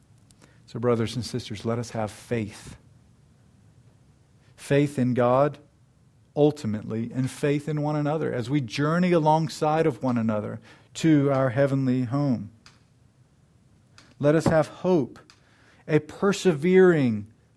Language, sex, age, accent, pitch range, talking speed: English, male, 40-59, American, 120-145 Hz, 115 wpm